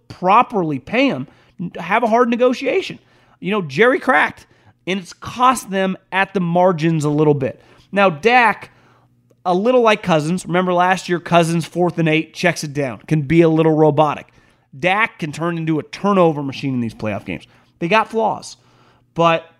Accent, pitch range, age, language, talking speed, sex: American, 145-210 Hz, 30-49, English, 175 wpm, male